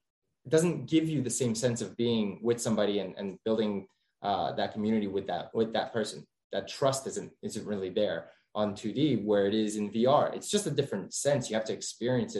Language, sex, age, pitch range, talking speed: English, male, 20-39, 110-140 Hz, 210 wpm